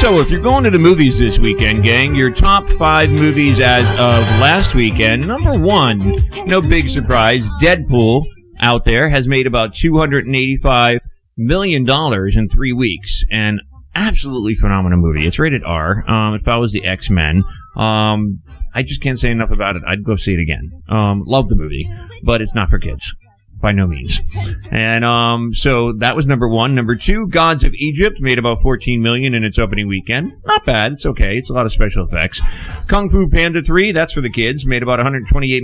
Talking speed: 185 wpm